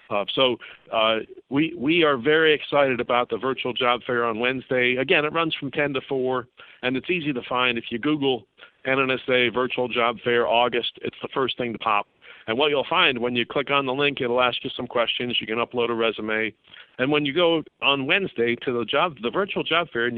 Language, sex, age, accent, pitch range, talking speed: English, male, 50-69, American, 120-145 Hz, 225 wpm